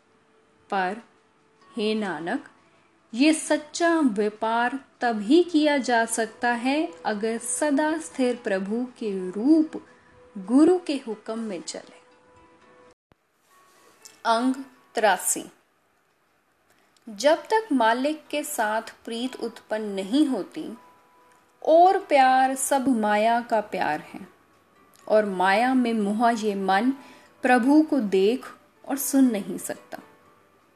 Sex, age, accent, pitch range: female, 10-29, native, 215-295 Hz